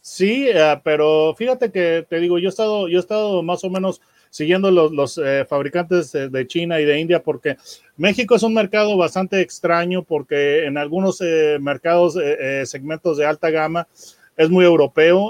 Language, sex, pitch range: Spanish, male, 155-200 Hz